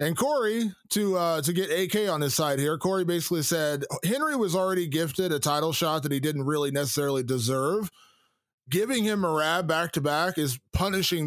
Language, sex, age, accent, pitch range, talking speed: English, male, 20-39, American, 145-185 Hz, 175 wpm